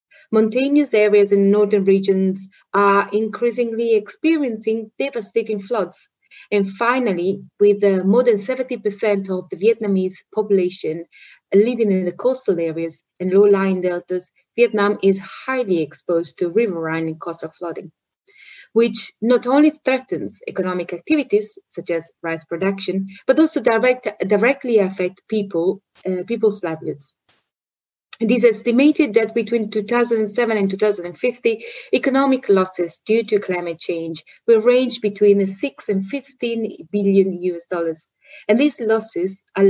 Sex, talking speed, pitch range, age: female, 125 wpm, 185-240 Hz, 30-49